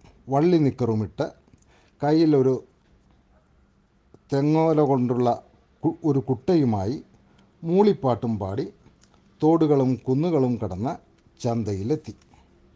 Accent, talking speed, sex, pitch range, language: native, 60 wpm, male, 110-150 Hz, Malayalam